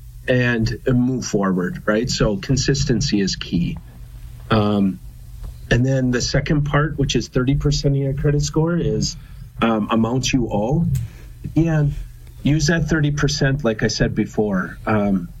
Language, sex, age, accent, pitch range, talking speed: English, male, 40-59, American, 110-140 Hz, 140 wpm